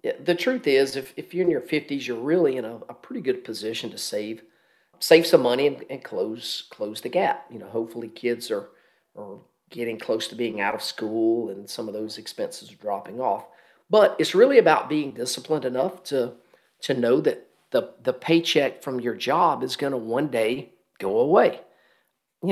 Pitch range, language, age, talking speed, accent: 120-165 Hz, English, 40-59, 200 wpm, American